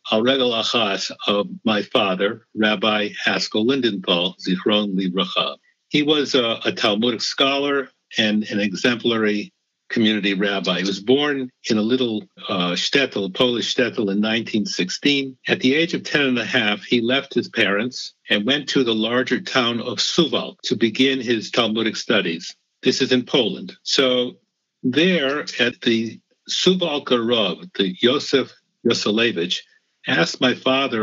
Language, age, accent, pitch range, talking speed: English, 60-79, American, 110-135 Hz, 135 wpm